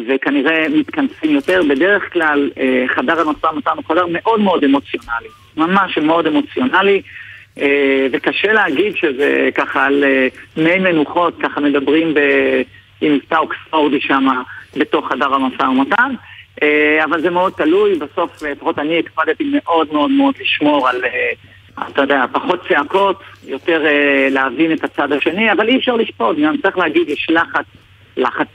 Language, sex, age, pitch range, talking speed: Hebrew, male, 50-69, 140-195 Hz, 150 wpm